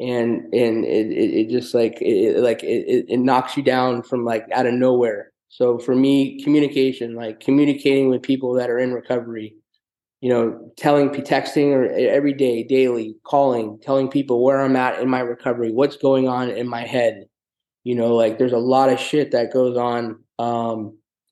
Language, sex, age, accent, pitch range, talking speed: English, male, 20-39, American, 120-140 Hz, 185 wpm